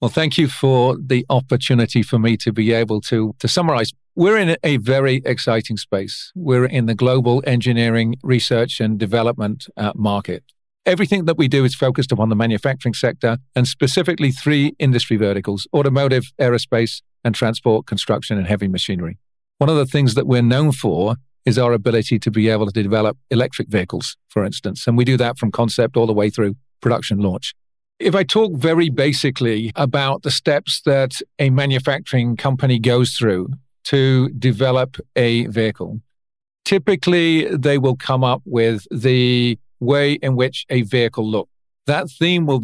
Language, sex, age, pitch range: English, male, 50-69, 115-135 Hz